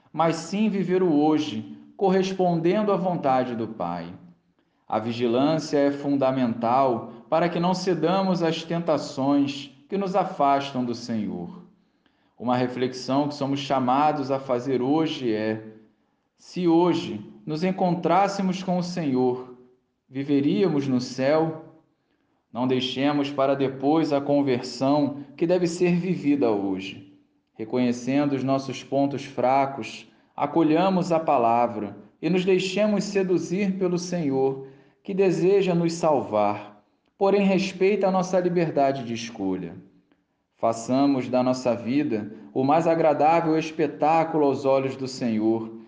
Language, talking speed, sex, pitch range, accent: Portuguese, 120 wpm, male, 125-175 Hz, Brazilian